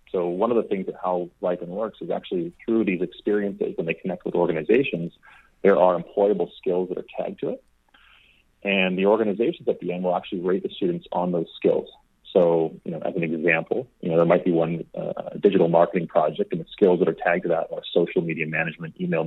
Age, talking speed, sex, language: 40-59, 220 wpm, male, English